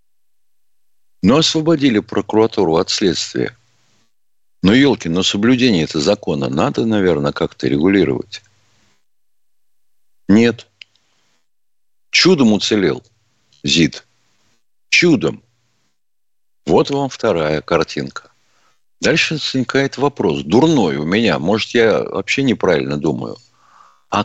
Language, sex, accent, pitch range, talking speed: Russian, male, native, 85-115 Hz, 90 wpm